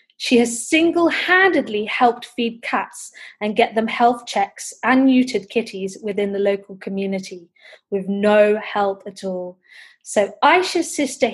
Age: 20-39